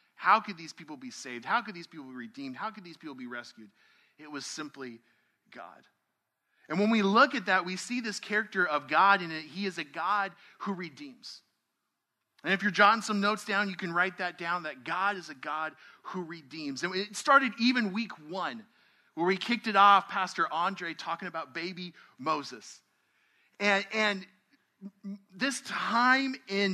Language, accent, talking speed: English, American, 185 wpm